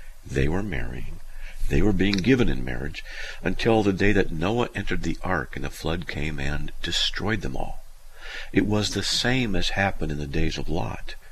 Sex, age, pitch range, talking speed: male, 50-69, 75-95 Hz, 190 wpm